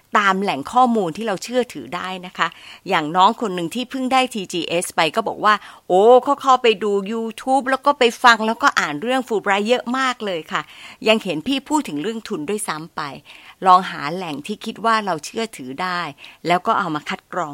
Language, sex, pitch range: Thai, female, 180-255 Hz